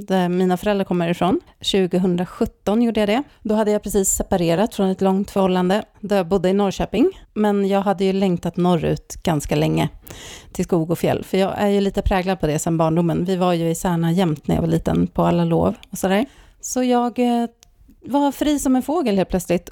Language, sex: Swedish, female